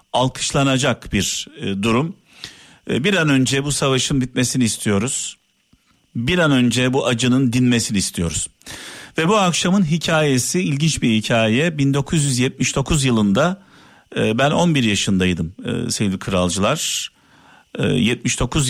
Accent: native